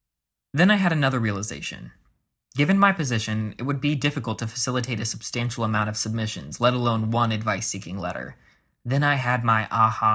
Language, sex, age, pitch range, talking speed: English, male, 20-39, 110-140 Hz, 170 wpm